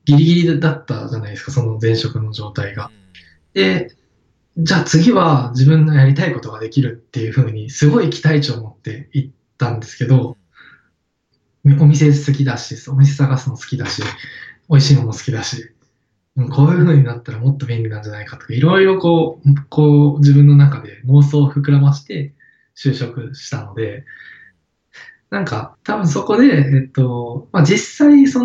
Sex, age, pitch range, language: male, 20-39, 120-150 Hz, Japanese